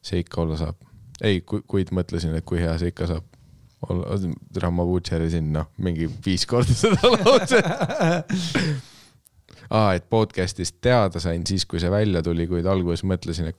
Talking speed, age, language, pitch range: 155 wpm, 20-39, English, 85-100 Hz